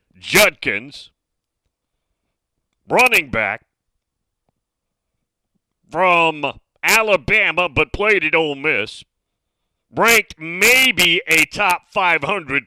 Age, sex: 40-59, male